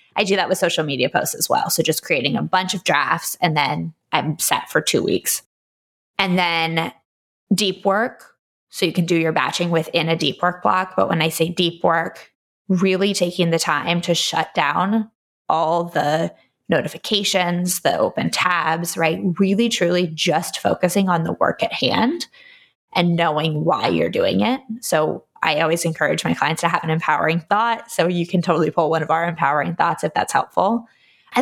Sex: female